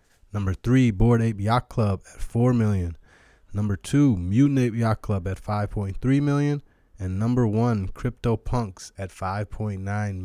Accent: American